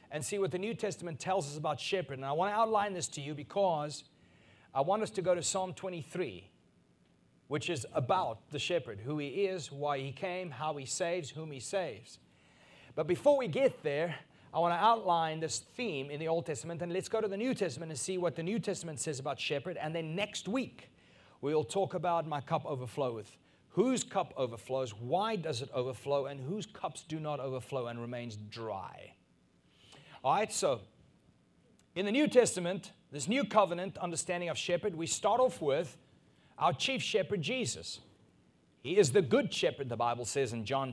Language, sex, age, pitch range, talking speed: English, male, 40-59, 130-185 Hz, 190 wpm